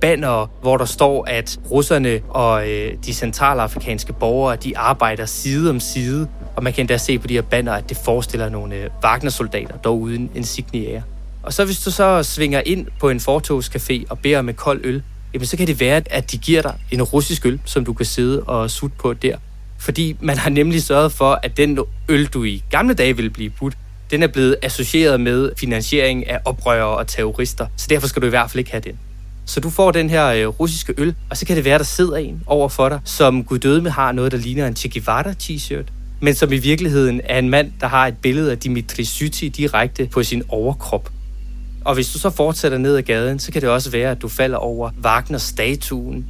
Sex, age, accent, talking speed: male, 20-39, native, 220 wpm